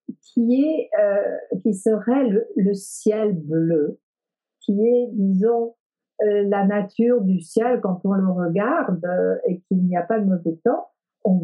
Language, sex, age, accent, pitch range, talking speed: French, female, 50-69, French, 175-230 Hz, 165 wpm